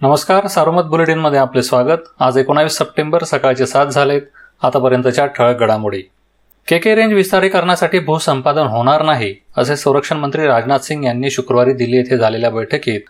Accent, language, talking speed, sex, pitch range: native, Marathi, 150 wpm, male, 130-165 Hz